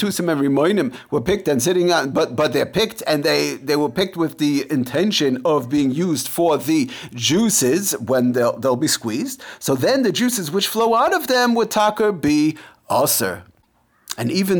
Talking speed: 190 wpm